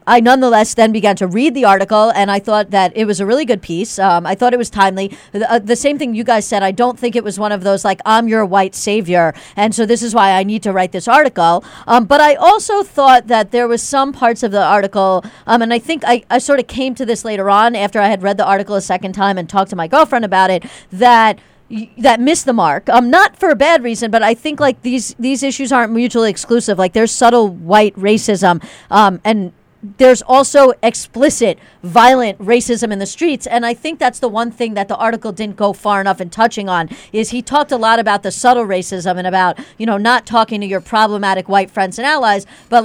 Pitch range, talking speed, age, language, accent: 200-245 Hz, 245 wpm, 40-59, English, American